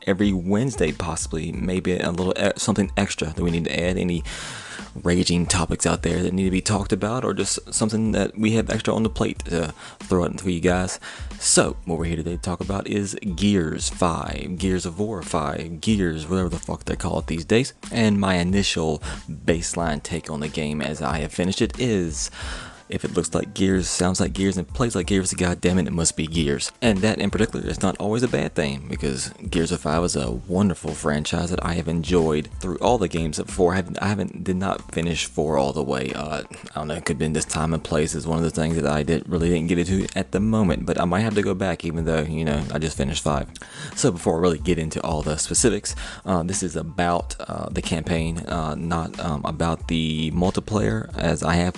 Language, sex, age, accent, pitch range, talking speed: English, male, 20-39, American, 80-95 Hz, 230 wpm